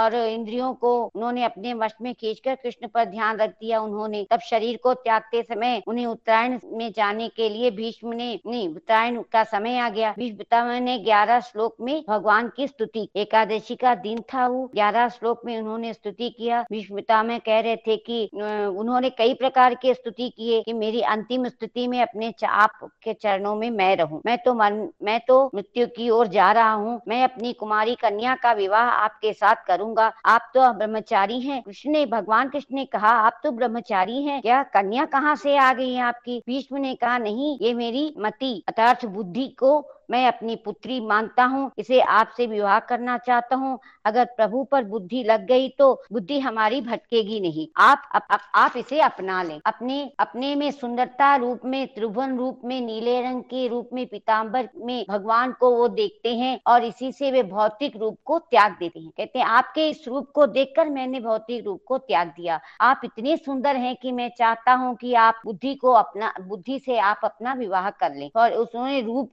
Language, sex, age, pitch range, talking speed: Hindi, male, 50-69, 220-255 Hz, 195 wpm